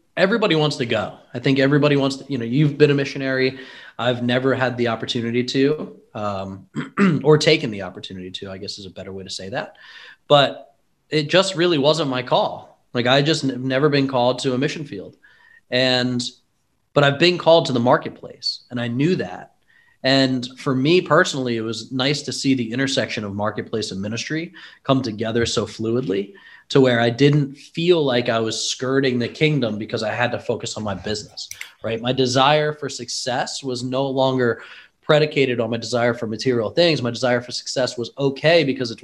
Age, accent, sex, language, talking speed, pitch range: 20-39, American, male, English, 195 wpm, 115-145 Hz